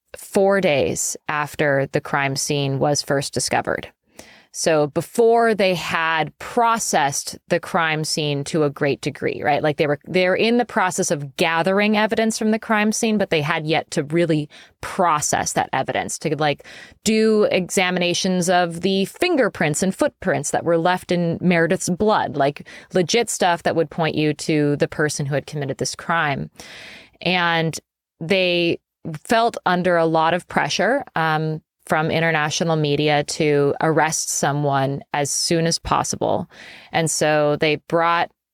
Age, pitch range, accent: 20-39, 150-185 Hz, American